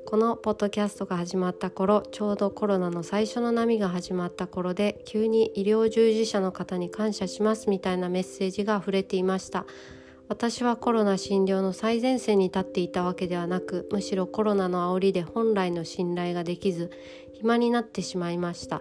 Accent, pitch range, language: native, 185-215 Hz, Japanese